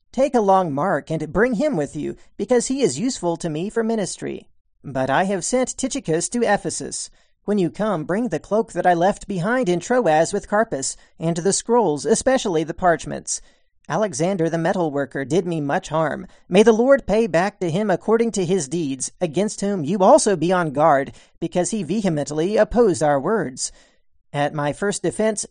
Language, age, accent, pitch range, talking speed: English, 40-59, American, 160-215 Hz, 190 wpm